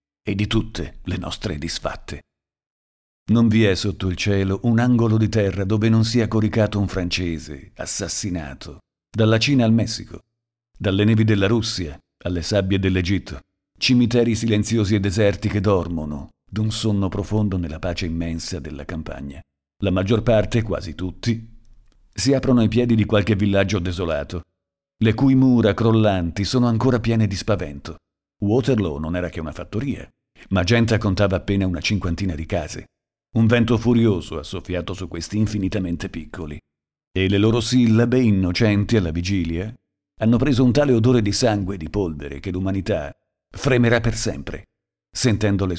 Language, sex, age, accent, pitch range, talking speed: Italian, male, 50-69, native, 85-110 Hz, 150 wpm